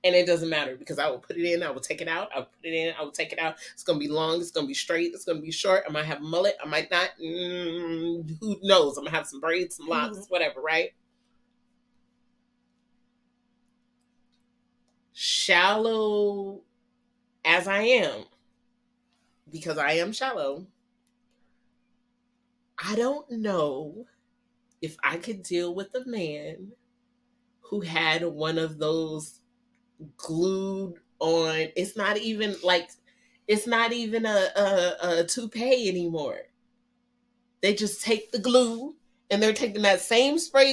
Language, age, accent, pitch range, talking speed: English, 30-49, American, 175-240 Hz, 160 wpm